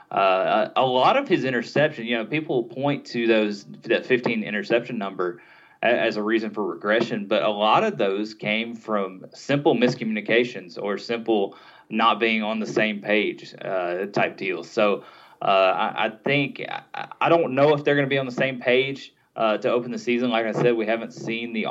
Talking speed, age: 190 wpm, 20-39